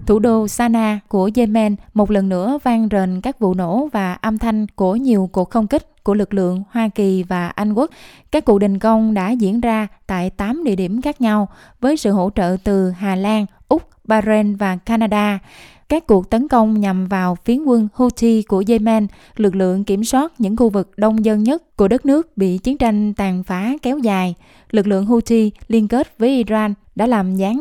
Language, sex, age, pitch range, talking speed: Vietnamese, female, 20-39, 195-235 Hz, 205 wpm